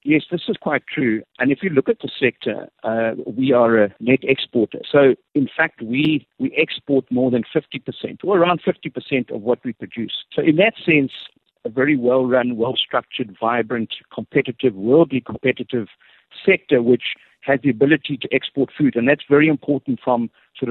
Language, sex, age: English, male, 60-79